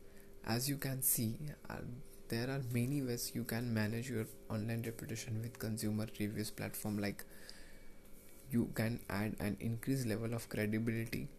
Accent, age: native, 20-39